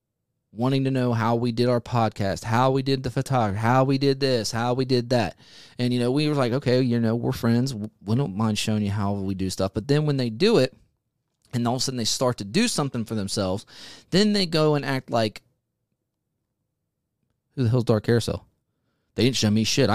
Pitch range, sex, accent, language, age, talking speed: 110-135 Hz, male, American, English, 30-49, 225 wpm